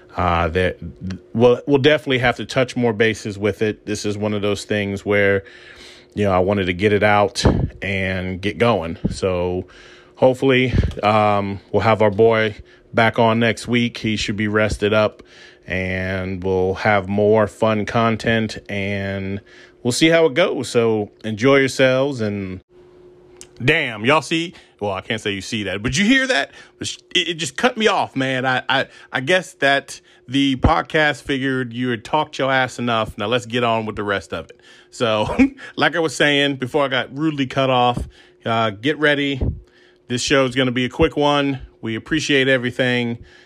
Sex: male